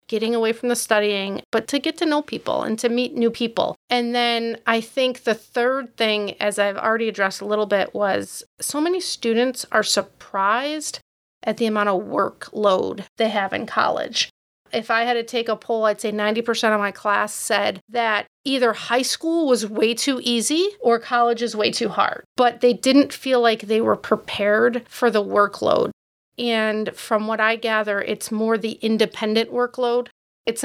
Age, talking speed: 30-49, 185 wpm